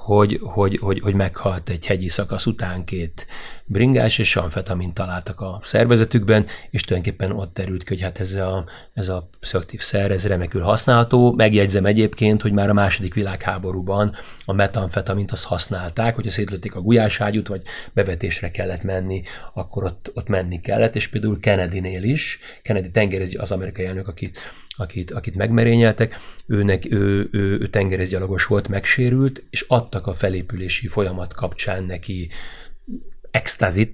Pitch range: 95-105 Hz